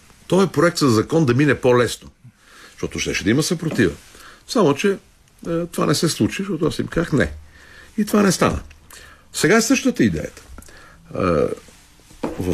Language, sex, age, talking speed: Bulgarian, male, 60-79, 165 wpm